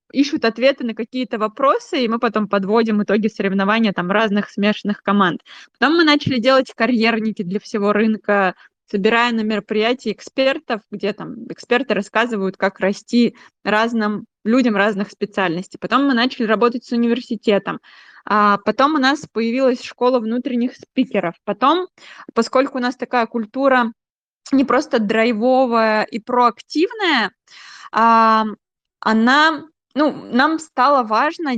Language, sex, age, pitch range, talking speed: Russian, female, 20-39, 210-260 Hz, 130 wpm